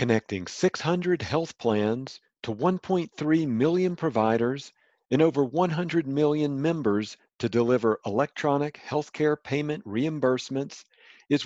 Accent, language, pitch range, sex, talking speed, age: American, English, 115-155 Hz, male, 110 wpm, 50-69